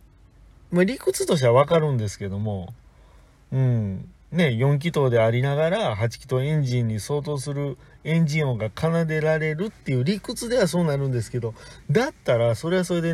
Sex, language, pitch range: male, Japanese, 105-155 Hz